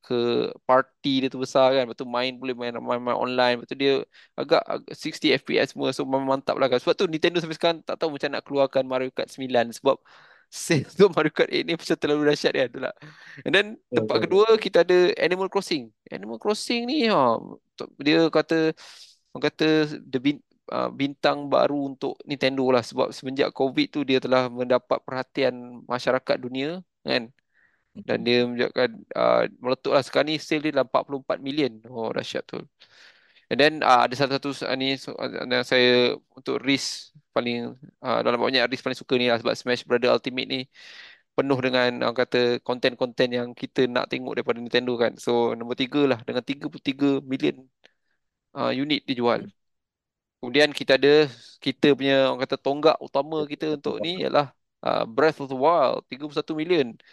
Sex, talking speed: male, 170 wpm